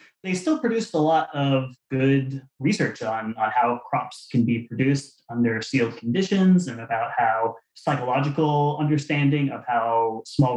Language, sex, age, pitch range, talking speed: English, male, 20-39, 125-155 Hz, 150 wpm